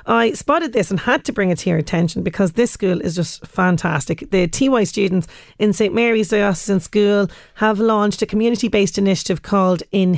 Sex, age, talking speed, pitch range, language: female, 30-49, 195 wpm, 180-215 Hz, English